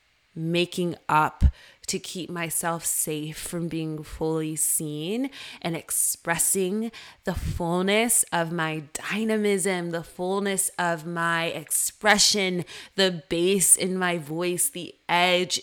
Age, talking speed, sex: 20-39, 110 wpm, female